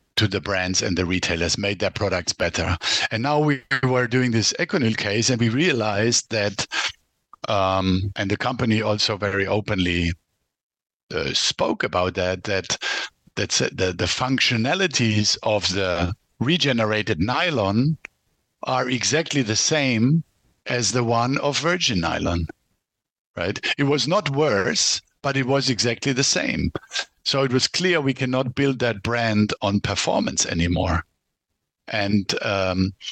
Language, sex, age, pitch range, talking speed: English, male, 50-69, 100-130 Hz, 140 wpm